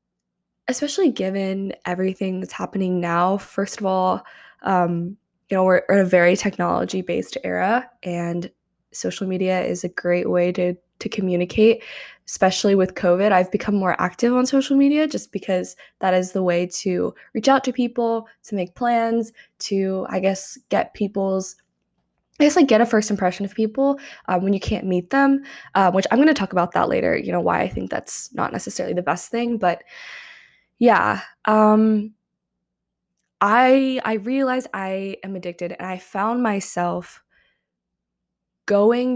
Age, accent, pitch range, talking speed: 10-29, American, 180-230 Hz, 160 wpm